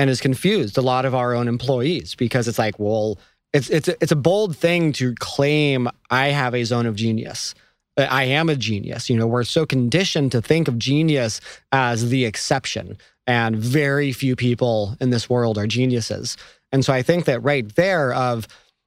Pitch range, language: 120-150 Hz, English